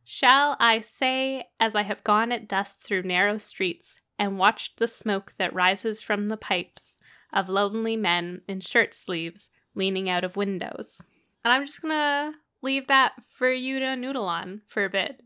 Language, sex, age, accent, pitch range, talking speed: English, female, 10-29, American, 200-250 Hz, 175 wpm